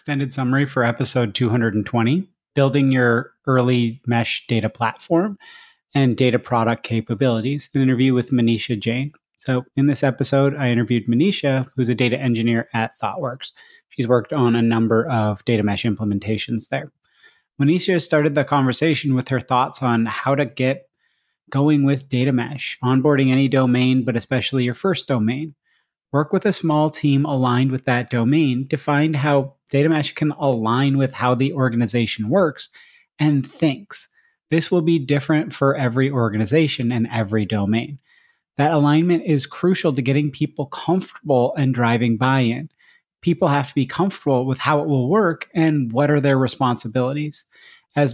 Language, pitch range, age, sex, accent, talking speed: English, 125-150 Hz, 30-49, male, American, 155 wpm